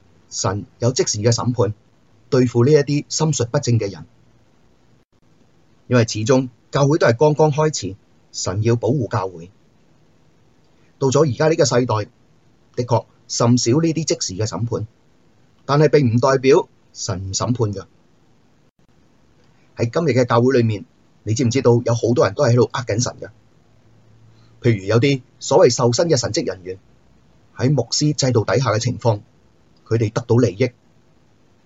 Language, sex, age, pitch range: Chinese, male, 30-49, 115-135 Hz